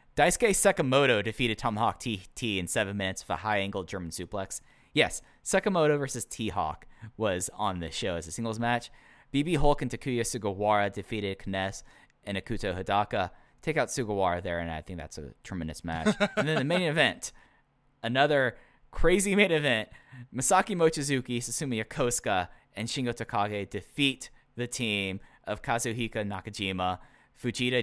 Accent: American